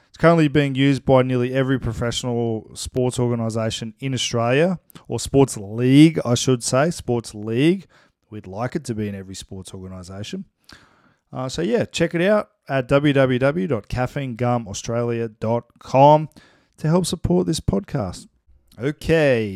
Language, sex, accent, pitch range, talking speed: English, male, Australian, 110-140 Hz, 130 wpm